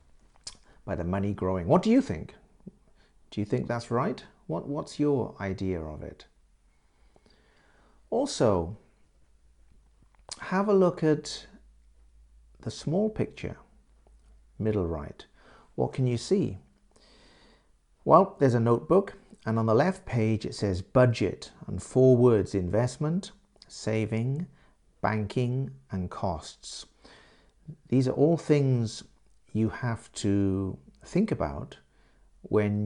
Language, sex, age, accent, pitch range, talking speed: English, male, 50-69, British, 90-130 Hz, 115 wpm